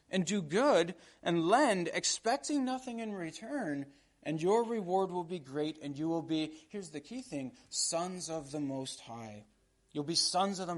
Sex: male